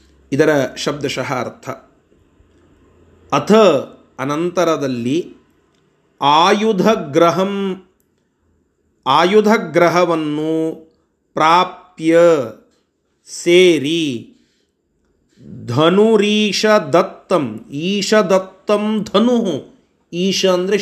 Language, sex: Kannada, male